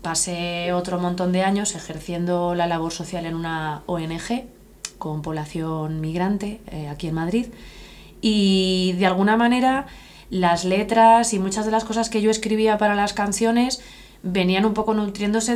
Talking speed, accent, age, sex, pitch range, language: 155 wpm, Spanish, 20-39, female, 170-205 Hz, Spanish